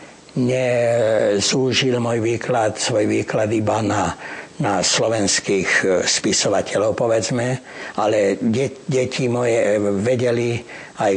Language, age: Slovak, 60-79